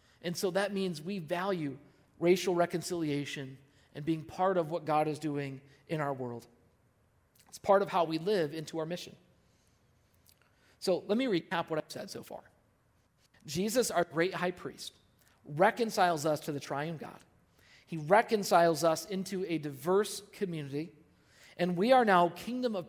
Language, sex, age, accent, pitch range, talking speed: English, male, 40-59, American, 145-190 Hz, 160 wpm